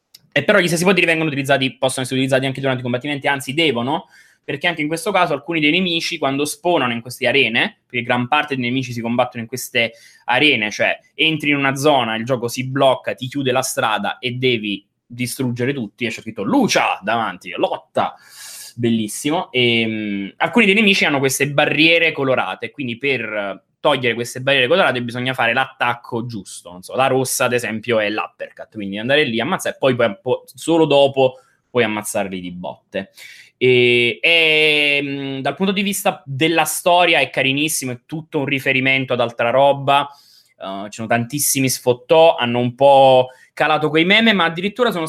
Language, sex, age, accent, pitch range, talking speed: Italian, male, 20-39, native, 125-155 Hz, 175 wpm